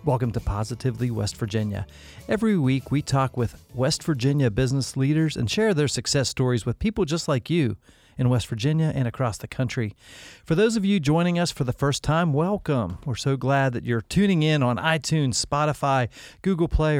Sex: male